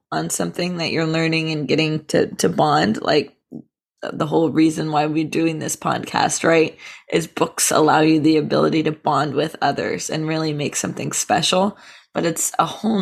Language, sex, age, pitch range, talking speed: English, female, 20-39, 155-195 Hz, 180 wpm